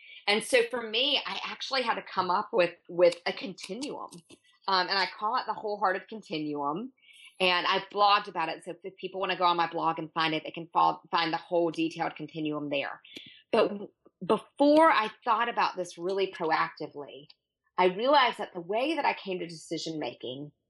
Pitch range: 170-225 Hz